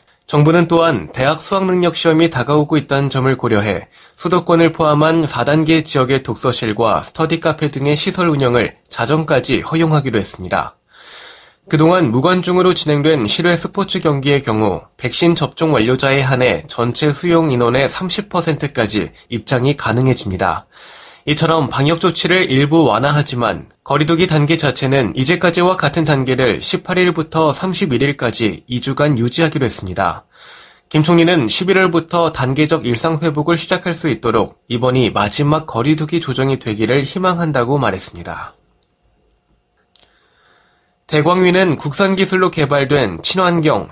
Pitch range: 130-165 Hz